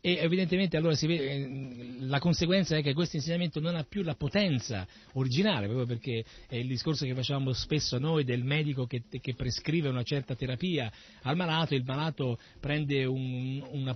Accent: native